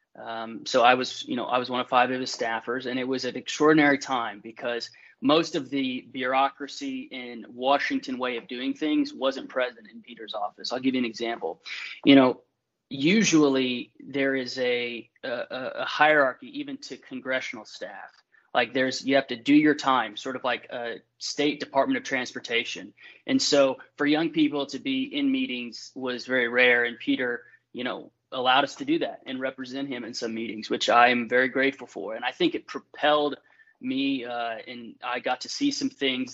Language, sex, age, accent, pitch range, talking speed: English, male, 20-39, American, 125-150 Hz, 195 wpm